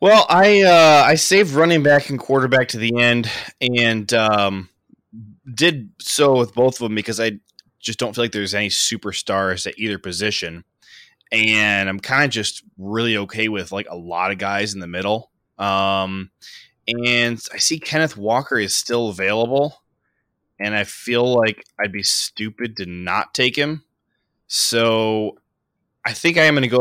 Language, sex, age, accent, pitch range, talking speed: English, male, 20-39, American, 100-125 Hz, 170 wpm